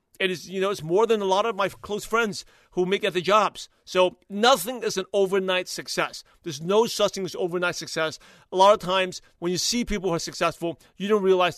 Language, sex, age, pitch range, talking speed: English, male, 30-49, 170-210 Hz, 230 wpm